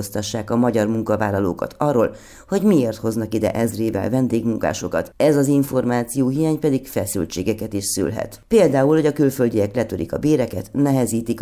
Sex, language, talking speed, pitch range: female, Hungarian, 135 wpm, 110-135 Hz